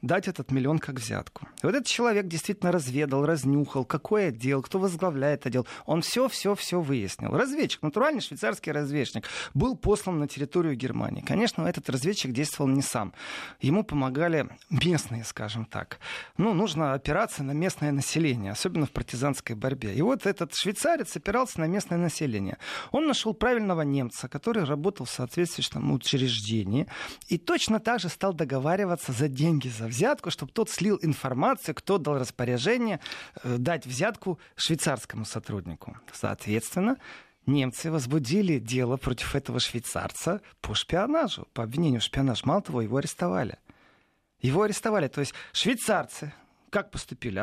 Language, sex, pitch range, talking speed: Russian, male, 130-195 Hz, 140 wpm